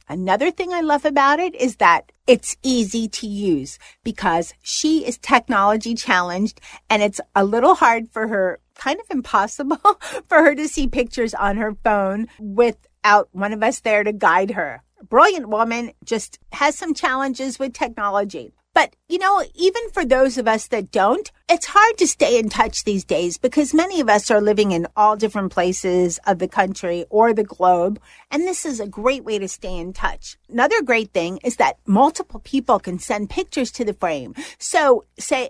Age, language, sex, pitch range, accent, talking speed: 50-69, English, female, 205-295 Hz, American, 190 wpm